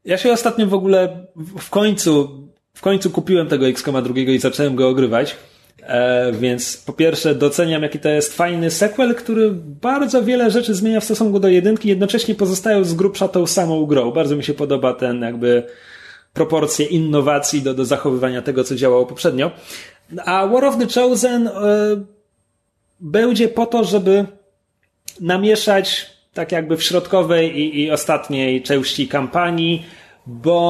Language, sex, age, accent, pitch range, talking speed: Polish, male, 30-49, native, 140-200 Hz, 150 wpm